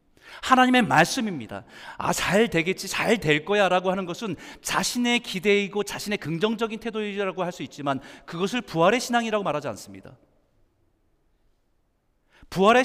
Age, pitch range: 40-59, 170-260 Hz